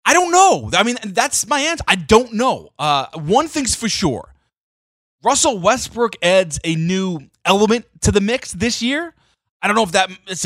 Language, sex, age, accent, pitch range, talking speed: English, male, 20-39, American, 130-200 Hz, 190 wpm